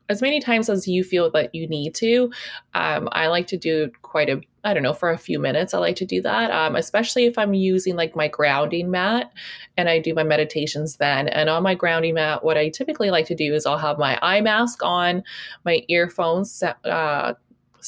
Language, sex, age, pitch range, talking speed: English, female, 20-39, 155-200 Hz, 220 wpm